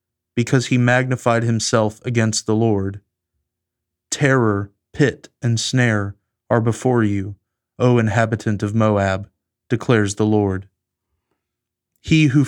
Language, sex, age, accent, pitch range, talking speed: English, male, 30-49, American, 100-125 Hz, 110 wpm